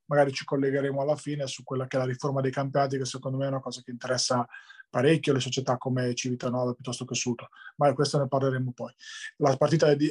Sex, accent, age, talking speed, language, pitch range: male, native, 20-39, 225 wpm, Italian, 135-165 Hz